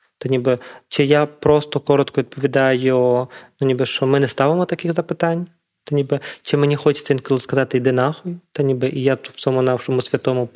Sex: male